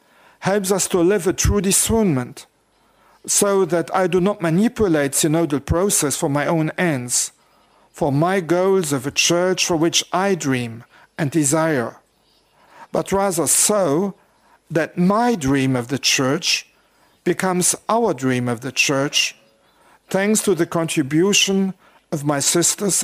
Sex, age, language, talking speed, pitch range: male, 50-69, English, 140 wpm, 155-195 Hz